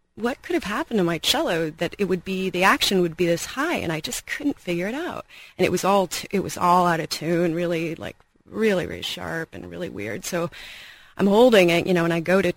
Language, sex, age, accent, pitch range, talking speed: English, female, 30-49, American, 175-225 Hz, 255 wpm